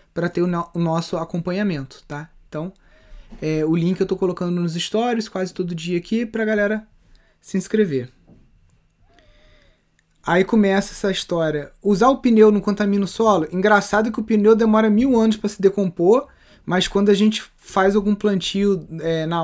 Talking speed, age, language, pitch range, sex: 165 wpm, 20-39, Portuguese, 175-215 Hz, male